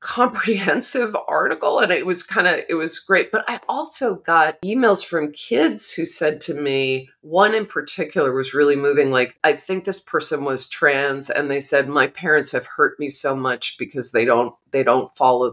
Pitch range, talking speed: 140-185 Hz, 195 wpm